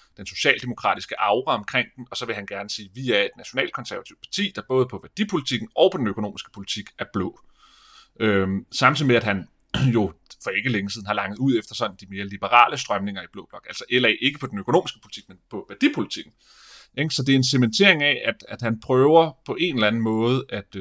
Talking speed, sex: 210 wpm, male